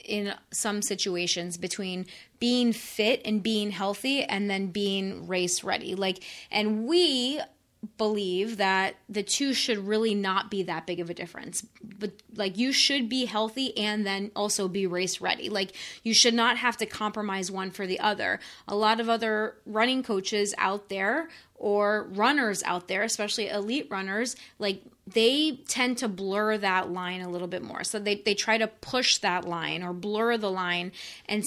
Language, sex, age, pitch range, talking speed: English, female, 20-39, 195-235 Hz, 175 wpm